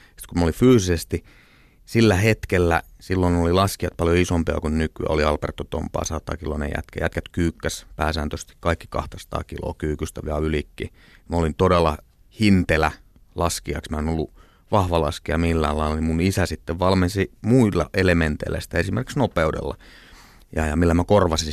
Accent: native